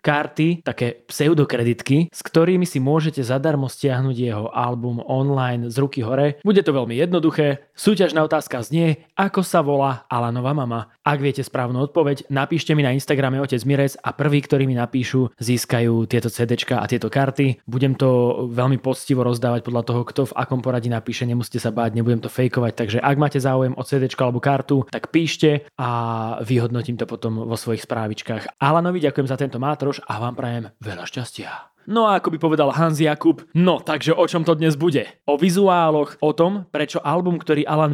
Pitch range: 125-155 Hz